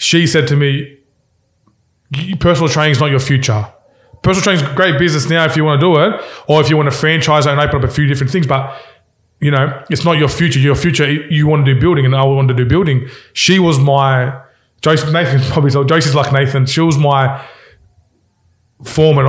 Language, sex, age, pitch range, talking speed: English, male, 20-39, 130-155 Hz, 220 wpm